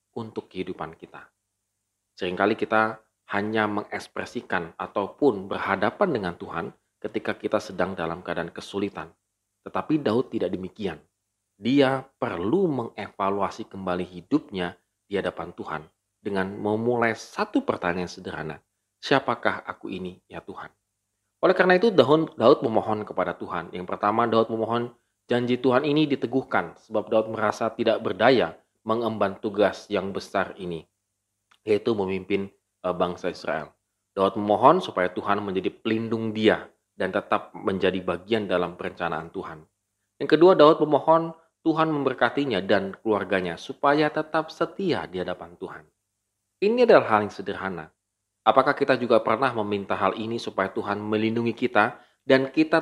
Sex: male